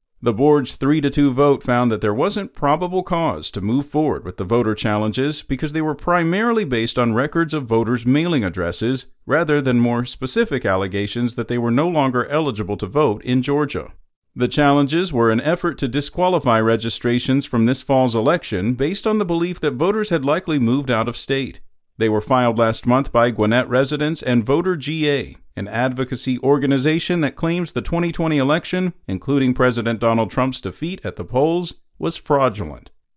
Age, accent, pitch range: 50-69, American, 115-155 Hz